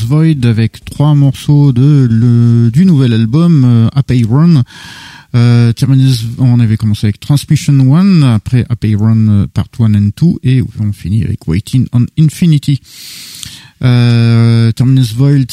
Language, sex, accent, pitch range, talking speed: French, male, French, 105-135 Hz, 145 wpm